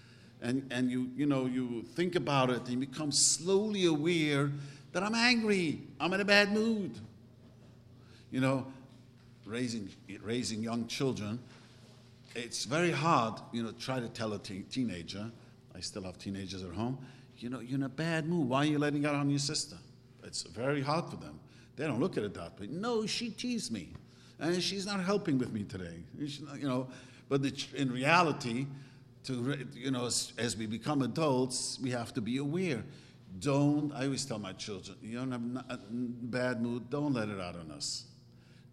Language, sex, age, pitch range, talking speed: English, male, 50-69, 120-150 Hz, 190 wpm